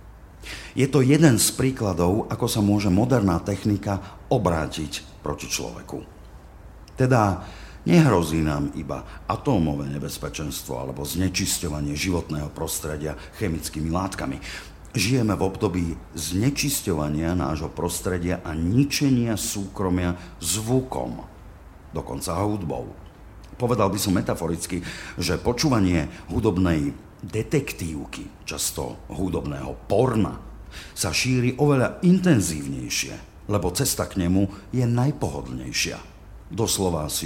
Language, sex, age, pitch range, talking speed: Slovak, male, 50-69, 80-105 Hz, 95 wpm